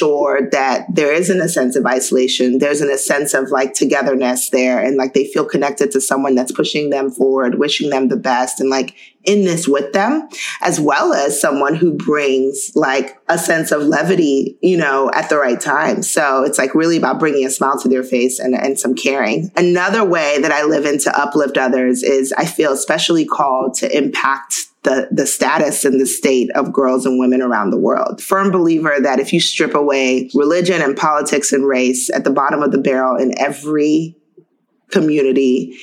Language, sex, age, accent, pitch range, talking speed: English, female, 30-49, American, 130-165 Hz, 200 wpm